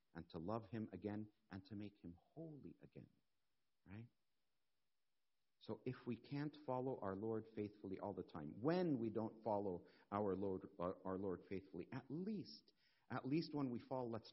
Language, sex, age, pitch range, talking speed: English, male, 50-69, 95-125 Hz, 170 wpm